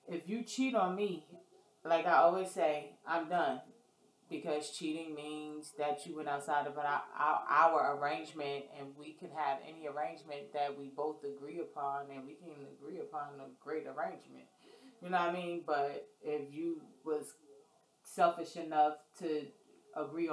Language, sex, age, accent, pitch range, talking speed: English, female, 20-39, American, 150-205 Hz, 160 wpm